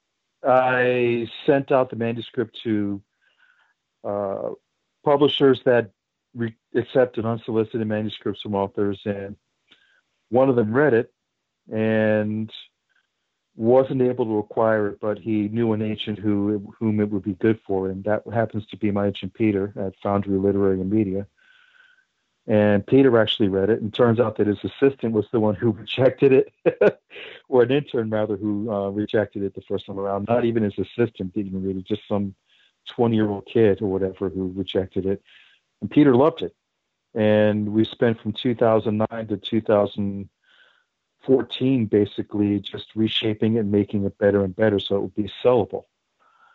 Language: English